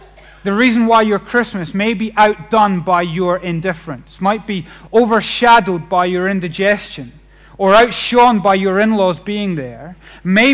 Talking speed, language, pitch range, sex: 140 wpm, English, 170-225 Hz, male